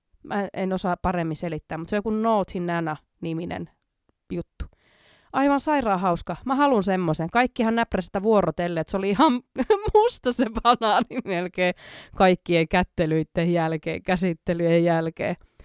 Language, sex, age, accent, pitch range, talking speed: Finnish, female, 20-39, native, 175-240 Hz, 130 wpm